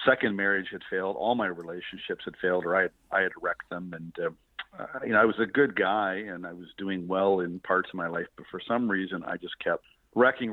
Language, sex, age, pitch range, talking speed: English, male, 50-69, 85-100 Hz, 250 wpm